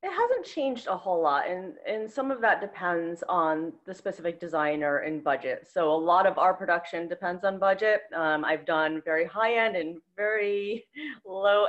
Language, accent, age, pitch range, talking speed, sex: English, American, 30-49, 175-245 Hz, 185 wpm, female